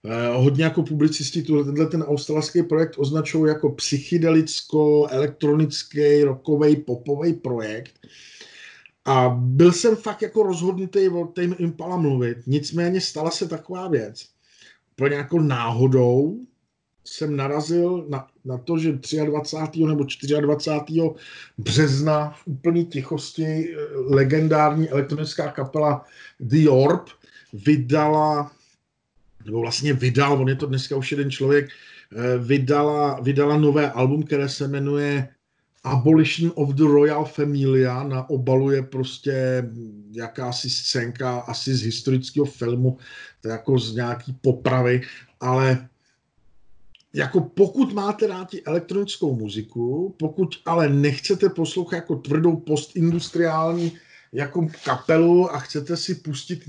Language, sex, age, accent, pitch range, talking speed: Czech, male, 50-69, native, 135-165 Hz, 115 wpm